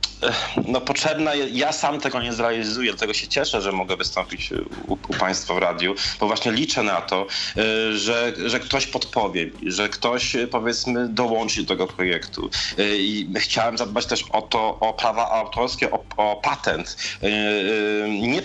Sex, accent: male, native